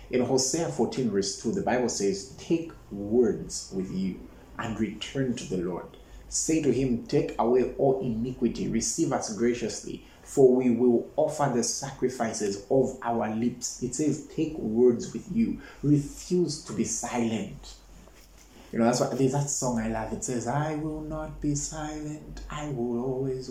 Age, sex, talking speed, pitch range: 30-49, male, 165 wpm, 115-145 Hz